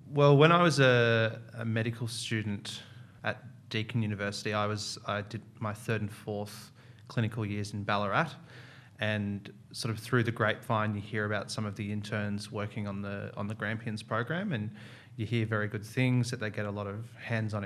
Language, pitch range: English, 105-120 Hz